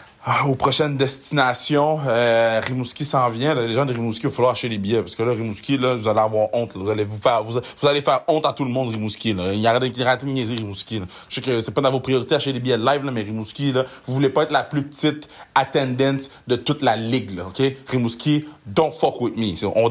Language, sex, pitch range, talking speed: French, male, 115-180 Hz, 280 wpm